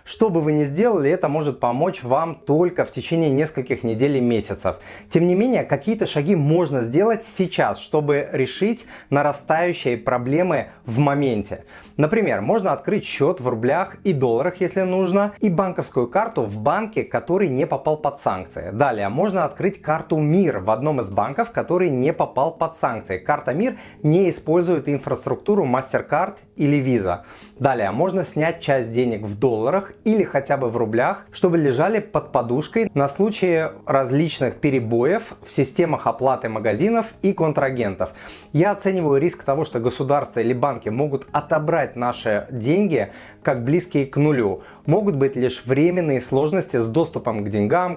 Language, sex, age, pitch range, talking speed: Russian, male, 30-49, 125-175 Hz, 155 wpm